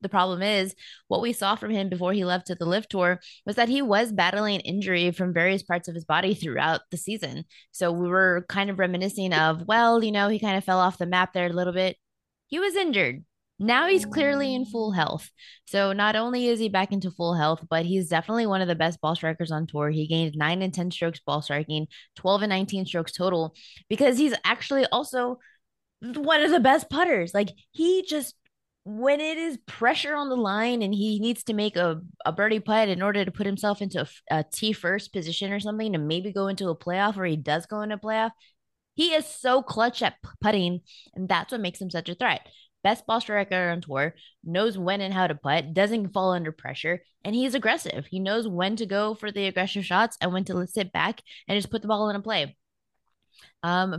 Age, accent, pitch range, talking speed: 20-39, American, 175-220 Hz, 225 wpm